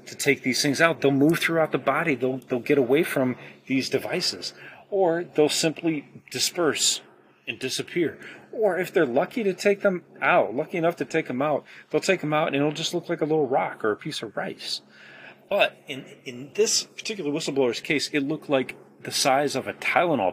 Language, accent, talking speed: English, American, 205 wpm